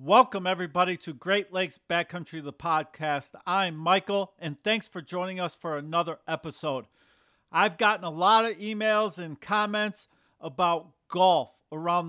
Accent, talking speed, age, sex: American, 145 wpm, 40-59, male